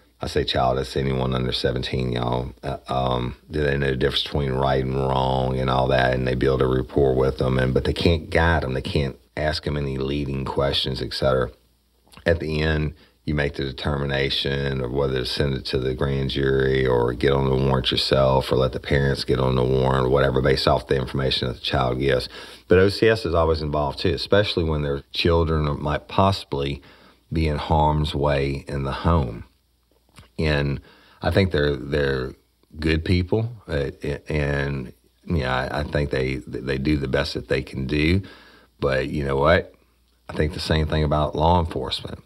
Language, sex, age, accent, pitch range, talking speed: English, male, 40-59, American, 65-75 Hz, 195 wpm